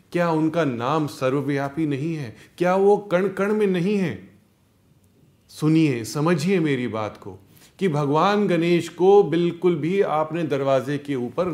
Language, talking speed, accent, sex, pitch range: Hindi, 145 wpm, native, male, 120-180 Hz